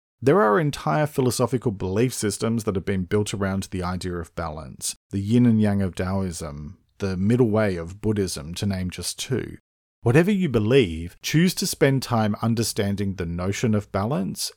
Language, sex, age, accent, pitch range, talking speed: English, male, 40-59, Australian, 95-130 Hz, 175 wpm